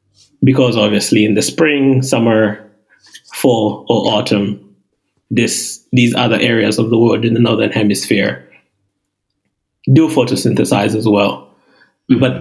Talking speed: 120 wpm